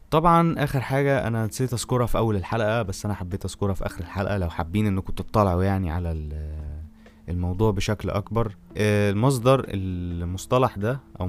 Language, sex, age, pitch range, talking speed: Arabic, male, 20-39, 90-105 Hz, 155 wpm